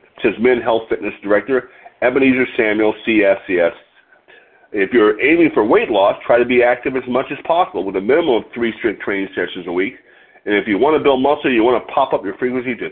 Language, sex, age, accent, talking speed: English, male, 50-69, American, 220 wpm